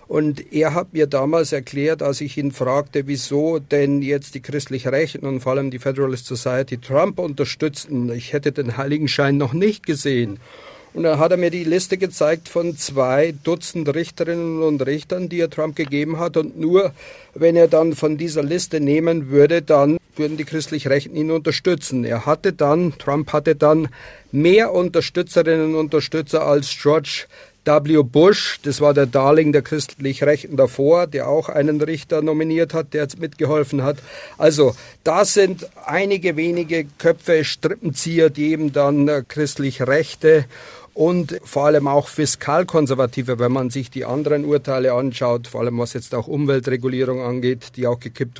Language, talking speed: German, 165 wpm